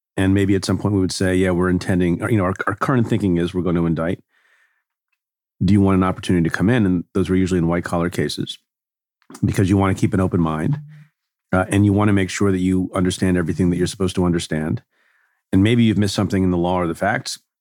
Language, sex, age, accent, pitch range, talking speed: English, male, 40-59, American, 90-105 Hz, 250 wpm